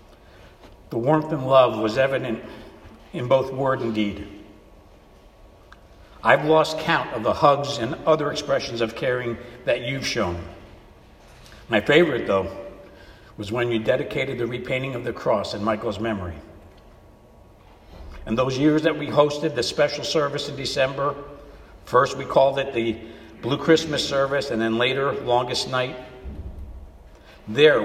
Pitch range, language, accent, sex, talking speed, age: 95-140 Hz, English, American, male, 140 wpm, 60-79